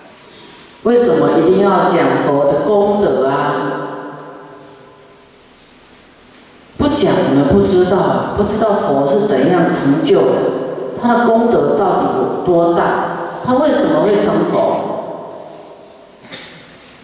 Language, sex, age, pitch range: Chinese, female, 40-59, 170-240 Hz